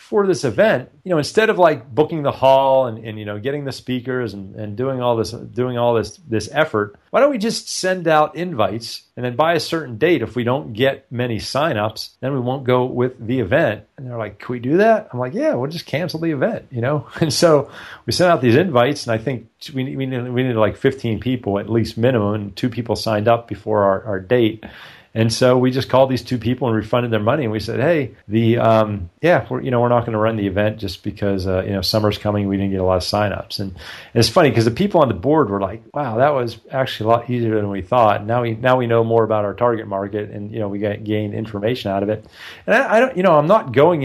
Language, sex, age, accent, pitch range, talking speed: English, male, 40-59, American, 105-130 Hz, 265 wpm